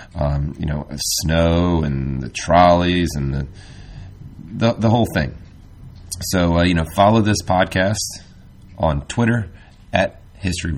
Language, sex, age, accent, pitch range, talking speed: English, male, 30-49, American, 80-100 Hz, 135 wpm